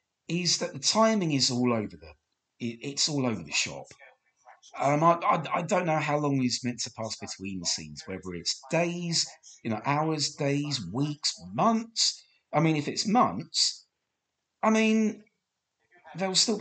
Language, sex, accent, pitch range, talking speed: English, male, British, 110-165 Hz, 165 wpm